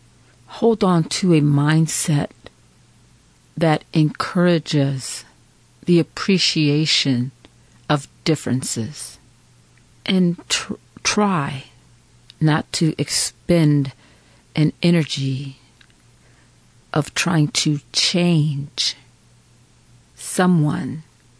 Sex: female